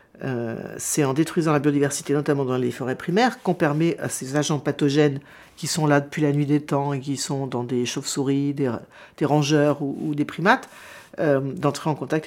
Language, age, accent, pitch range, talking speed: French, 50-69, French, 135-175 Hz, 205 wpm